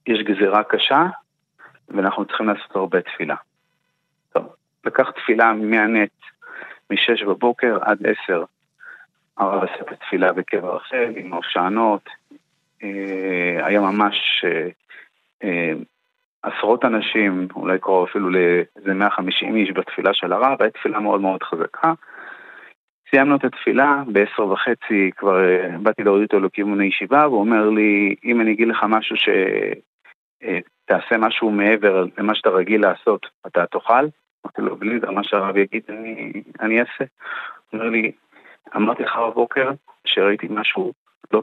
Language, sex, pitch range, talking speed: Hebrew, male, 95-120 Hz, 135 wpm